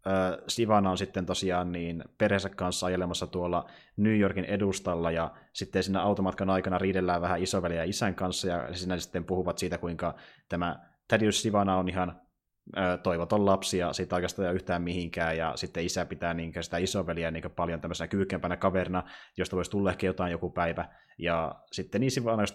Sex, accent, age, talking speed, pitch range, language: male, native, 20-39, 170 wpm, 90-100 Hz, Finnish